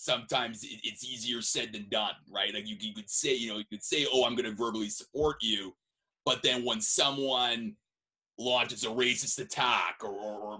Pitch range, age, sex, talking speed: 120-165 Hz, 30-49, male, 185 wpm